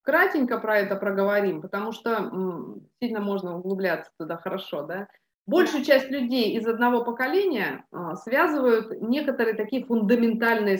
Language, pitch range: Russian, 190-255 Hz